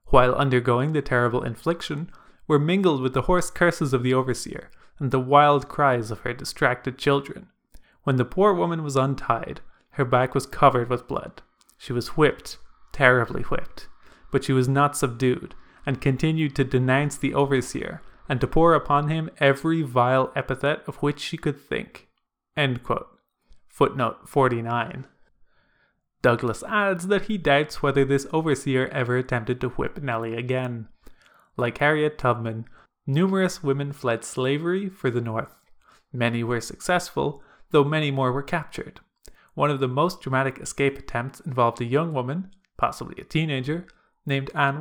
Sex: male